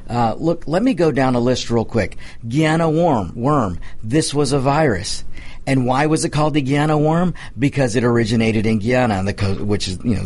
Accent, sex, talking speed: American, male, 215 wpm